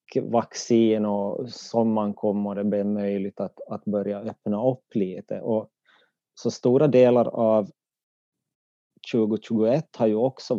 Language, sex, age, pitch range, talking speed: Swedish, male, 30-49, 105-120 Hz, 125 wpm